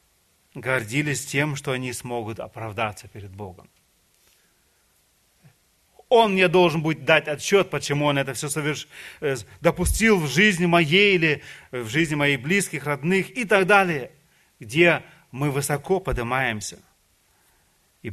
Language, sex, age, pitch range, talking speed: Russian, male, 40-59, 105-145 Hz, 120 wpm